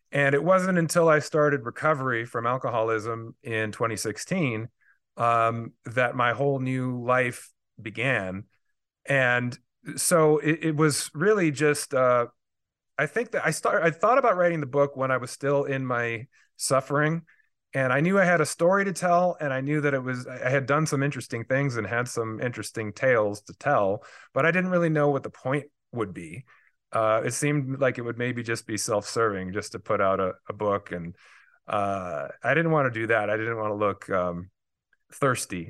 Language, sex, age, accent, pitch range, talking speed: English, male, 30-49, American, 110-150 Hz, 190 wpm